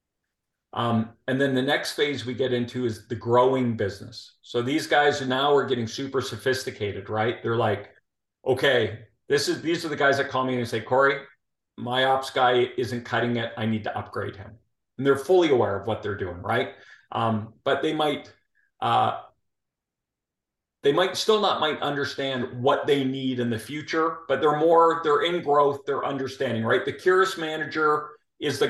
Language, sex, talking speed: English, male, 185 wpm